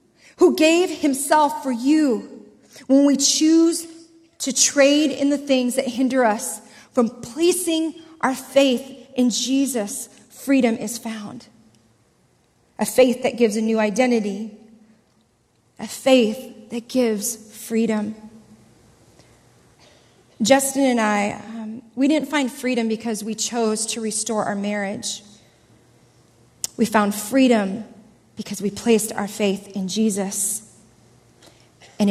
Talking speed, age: 120 wpm, 30-49